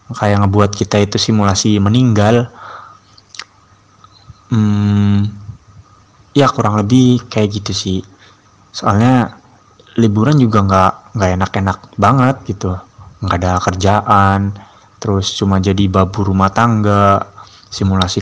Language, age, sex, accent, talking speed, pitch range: Indonesian, 20-39, male, native, 100 wpm, 95-110 Hz